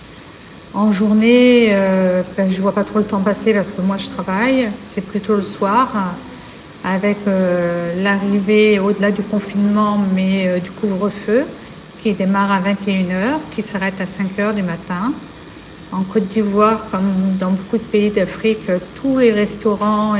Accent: French